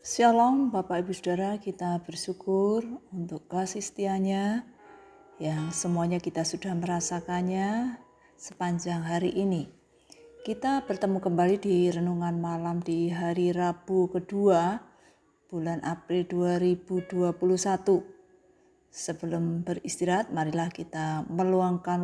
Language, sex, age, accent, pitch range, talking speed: Indonesian, female, 30-49, native, 170-195 Hz, 95 wpm